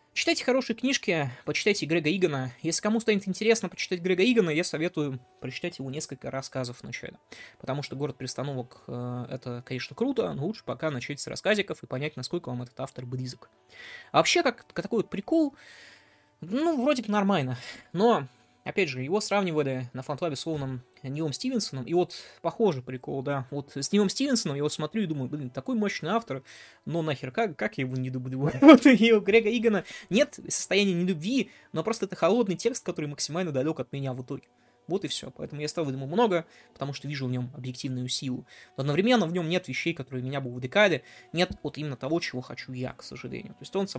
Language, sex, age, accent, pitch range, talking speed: Russian, male, 20-39, native, 130-190 Hz, 200 wpm